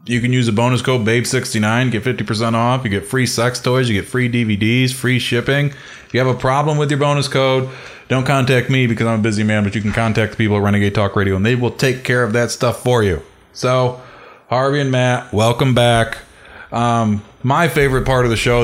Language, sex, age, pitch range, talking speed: English, male, 20-39, 105-125 Hz, 225 wpm